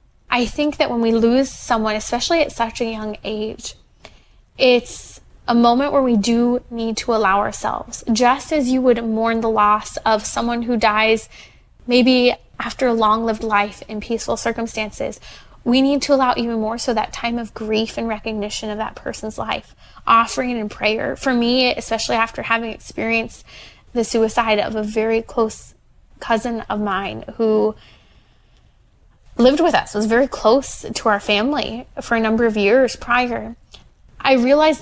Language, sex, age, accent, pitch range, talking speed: English, female, 20-39, American, 215-245 Hz, 165 wpm